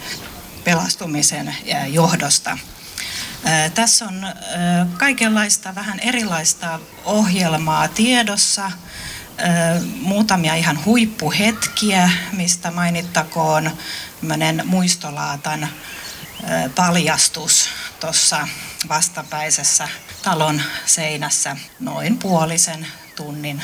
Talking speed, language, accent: 55 wpm, Finnish, native